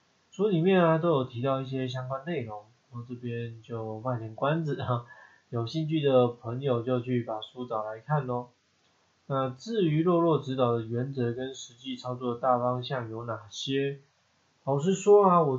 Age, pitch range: 20-39, 120-150 Hz